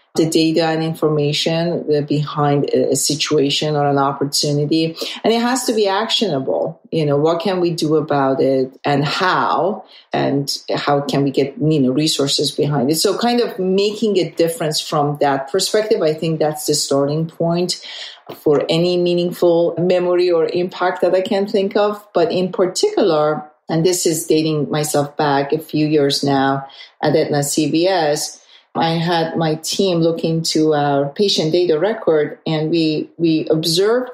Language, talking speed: English, 160 wpm